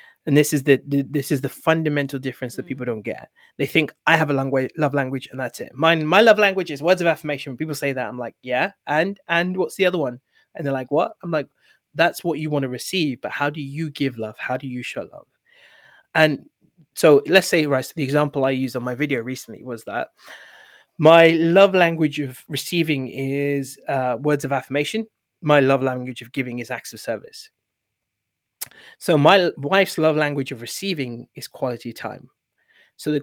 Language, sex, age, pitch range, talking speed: English, male, 20-39, 130-155 Hz, 210 wpm